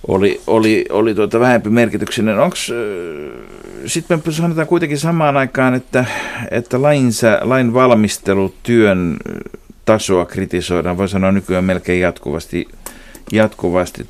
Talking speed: 105 wpm